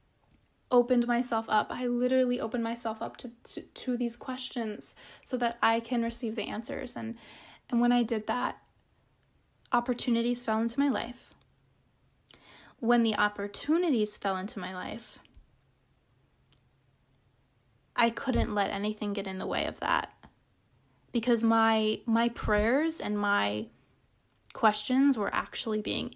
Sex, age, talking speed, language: female, 20-39, 135 wpm, English